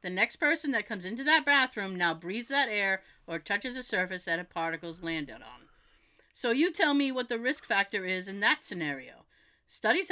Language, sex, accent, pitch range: English, female, American, 185-255 Hz